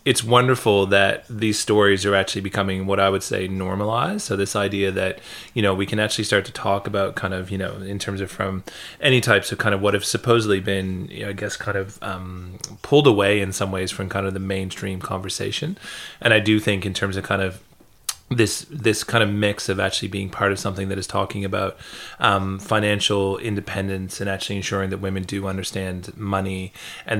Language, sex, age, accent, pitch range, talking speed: English, male, 30-49, American, 95-105 Hz, 215 wpm